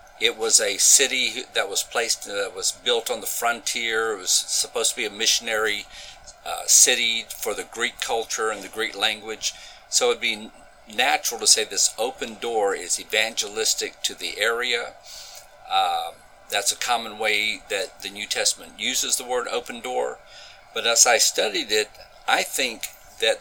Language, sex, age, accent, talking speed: English, male, 50-69, American, 175 wpm